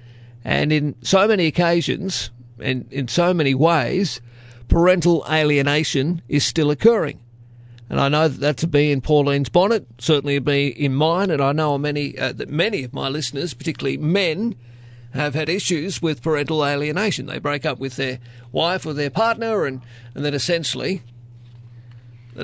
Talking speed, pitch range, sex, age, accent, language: 165 wpm, 120-160 Hz, male, 40-59, Australian, English